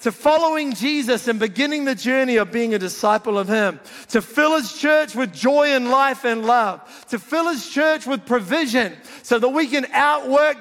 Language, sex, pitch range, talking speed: English, male, 200-265 Hz, 190 wpm